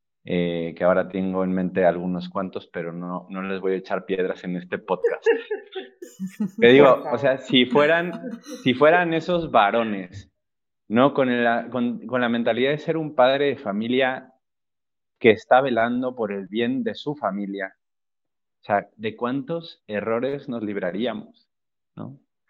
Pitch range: 105-135 Hz